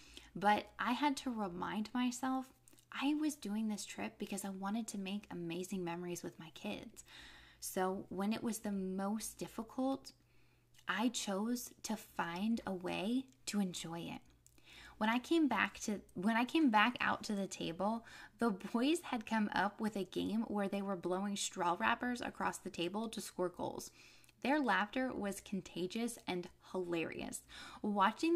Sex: female